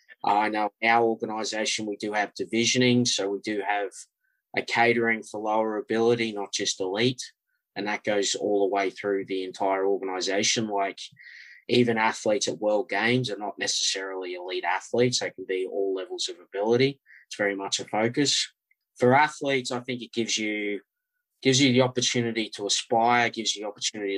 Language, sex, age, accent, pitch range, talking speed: English, male, 20-39, Australian, 100-120 Hz, 175 wpm